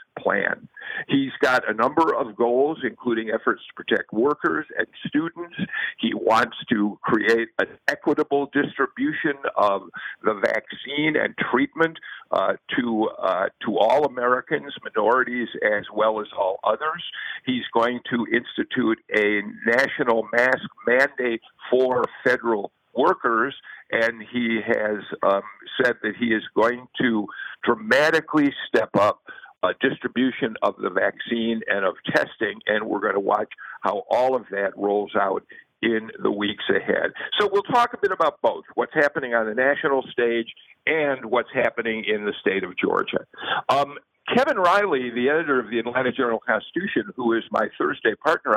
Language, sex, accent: English, male, American